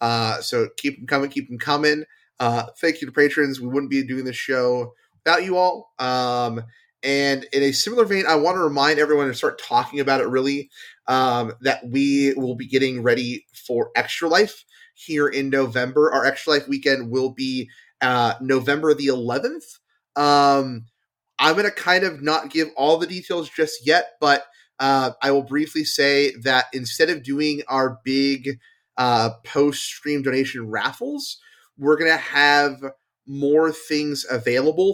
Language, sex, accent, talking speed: English, male, American, 170 wpm